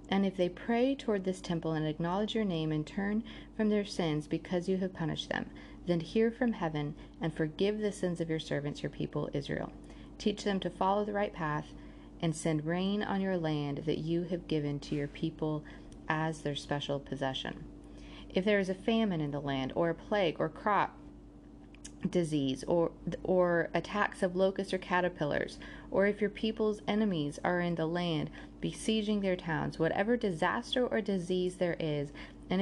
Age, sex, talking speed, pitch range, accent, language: 40-59, female, 180 wpm, 155-195 Hz, American, English